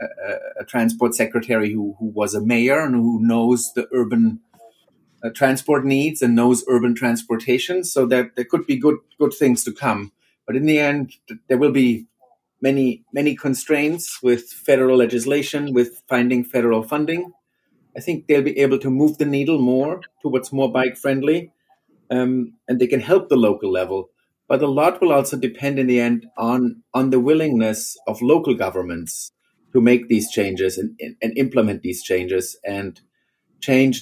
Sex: male